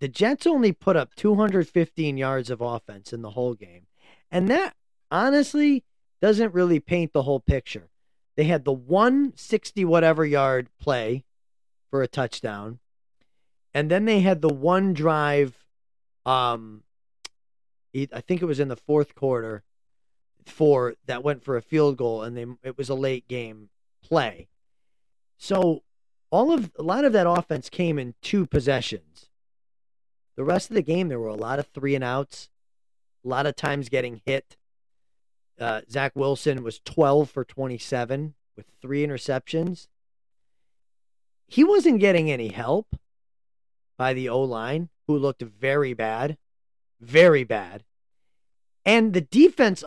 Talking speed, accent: 140 wpm, American